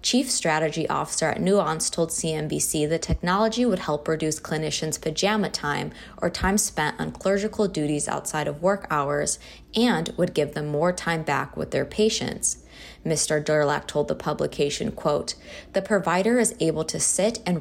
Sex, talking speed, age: female, 165 wpm, 20-39